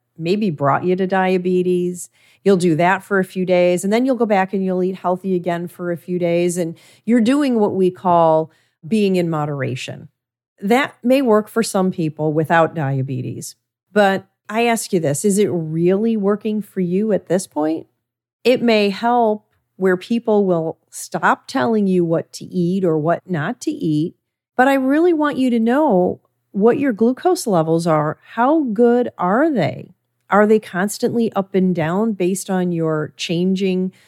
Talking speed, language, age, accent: 175 wpm, English, 40-59, American